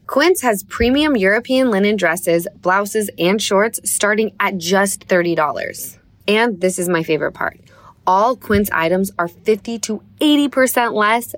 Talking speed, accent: 140 wpm, American